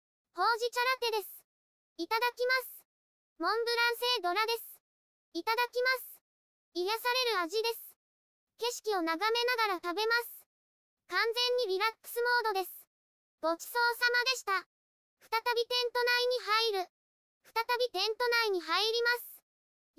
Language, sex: Japanese, male